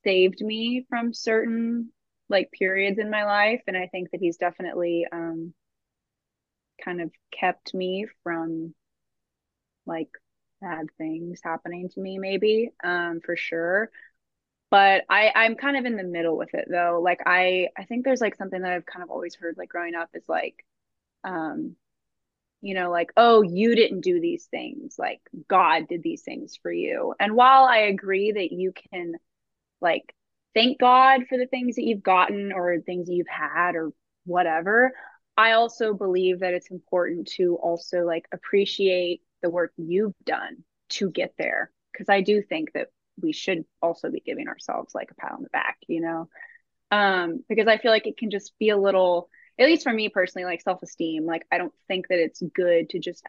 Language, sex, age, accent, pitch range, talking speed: English, female, 20-39, American, 175-225 Hz, 185 wpm